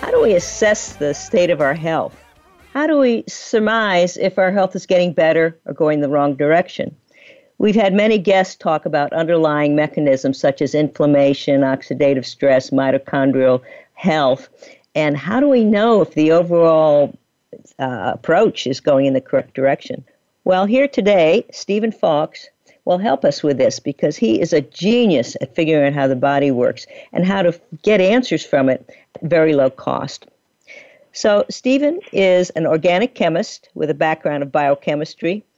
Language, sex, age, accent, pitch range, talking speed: English, female, 50-69, American, 145-195 Hz, 165 wpm